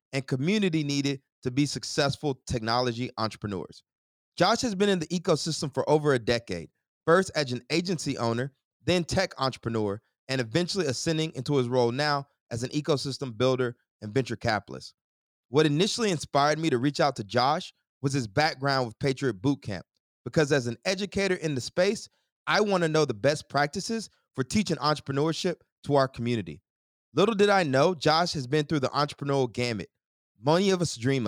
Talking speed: 175 wpm